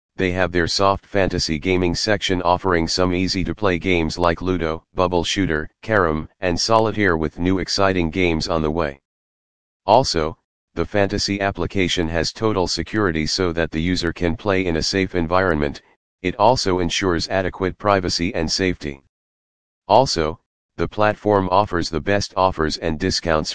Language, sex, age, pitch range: English, male, 40-59, 80-95 Hz